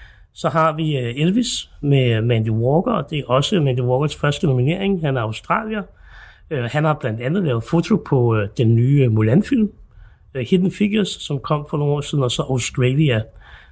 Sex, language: male, Danish